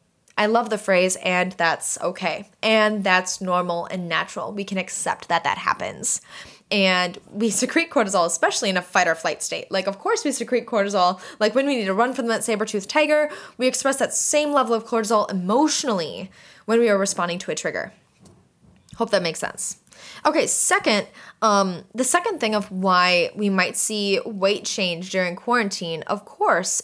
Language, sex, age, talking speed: English, female, 10-29, 175 wpm